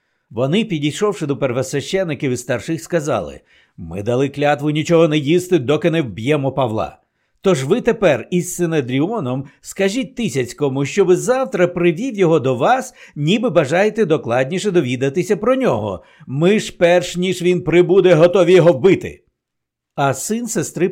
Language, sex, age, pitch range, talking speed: Ukrainian, male, 60-79, 140-180 Hz, 145 wpm